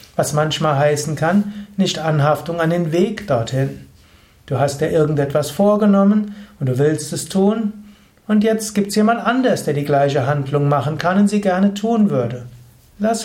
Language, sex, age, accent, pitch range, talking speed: German, male, 60-79, German, 135-185 Hz, 170 wpm